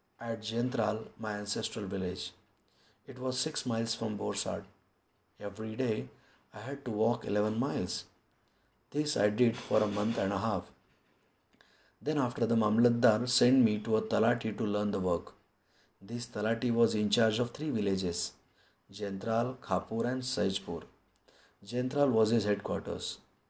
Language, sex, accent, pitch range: Marathi, male, native, 105-130 Hz